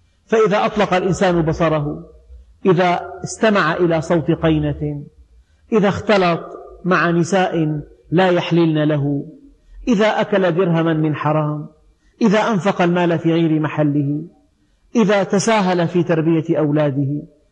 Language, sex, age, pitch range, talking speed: Arabic, male, 40-59, 150-195 Hz, 110 wpm